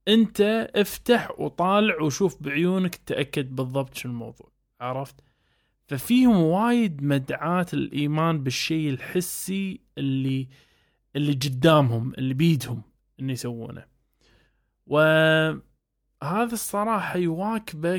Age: 20-39